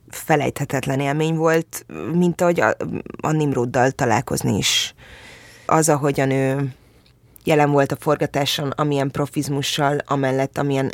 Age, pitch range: 20-39, 135-155 Hz